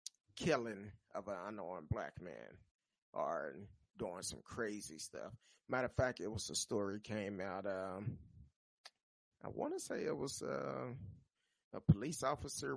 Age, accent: 30-49, American